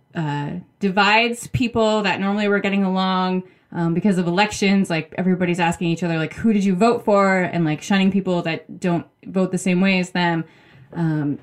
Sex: female